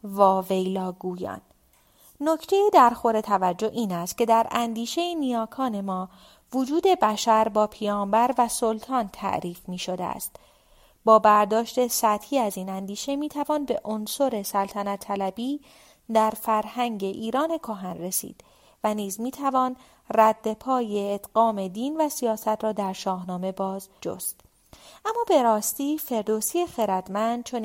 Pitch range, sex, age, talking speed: 195-255 Hz, female, 30-49, 130 wpm